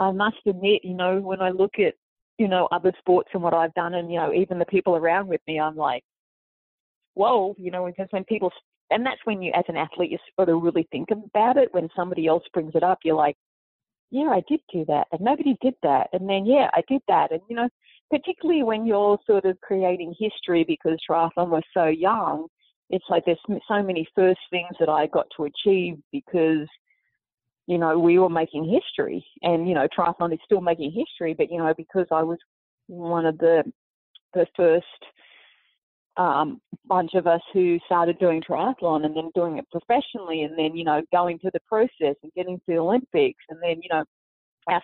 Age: 30-49